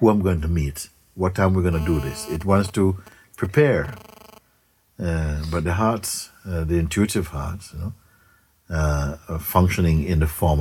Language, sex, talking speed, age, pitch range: English, male, 190 wpm, 60-79, 80-100 Hz